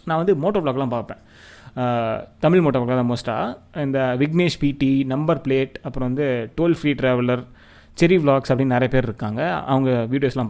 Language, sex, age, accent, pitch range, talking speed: Tamil, male, 20-39, native, 125-165 Hz, 160 wpm